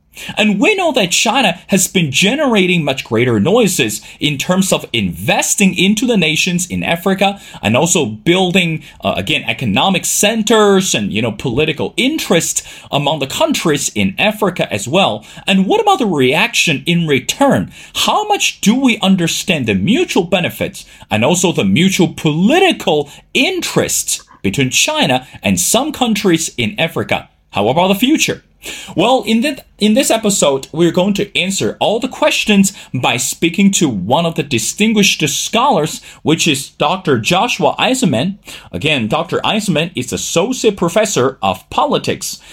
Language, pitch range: English, 155-215 Hz